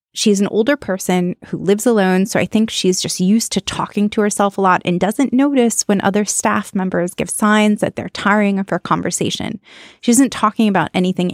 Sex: female